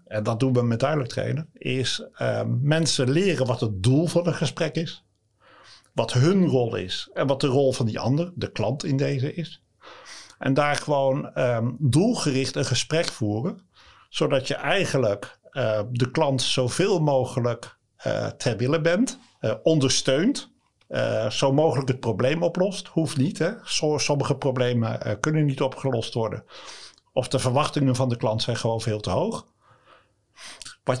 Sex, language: male, Dutch